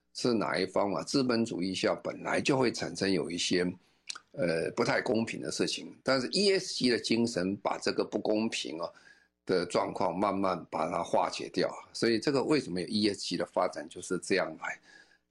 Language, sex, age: Chinese, male, 50-69